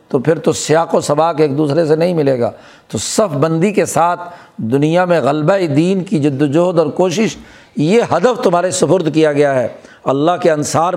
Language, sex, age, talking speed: Urdu, male, 60-79, 200 wpm